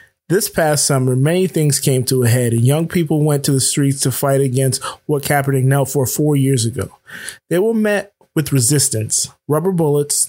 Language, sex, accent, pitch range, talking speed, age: English, male, American, 130-155 Hz, 190 wpm, 20-39